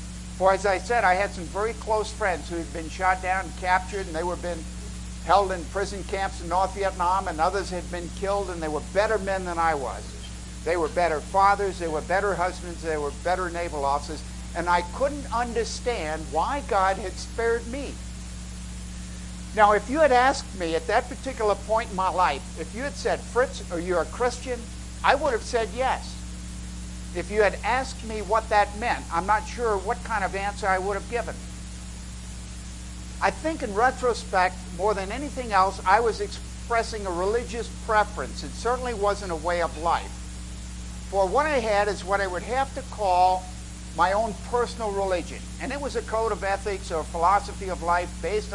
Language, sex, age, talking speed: English, male, 60-79, 195 wpm